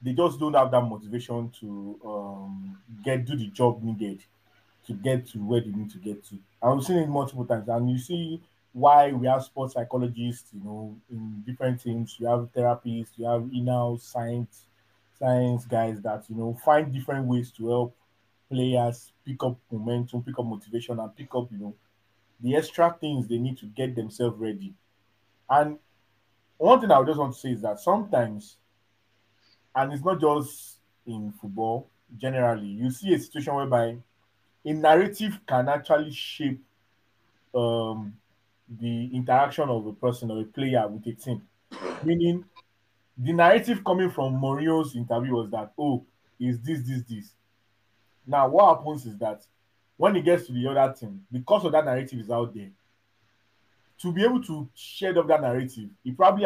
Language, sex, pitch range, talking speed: English, male, 110-135 Hz, 170 wpm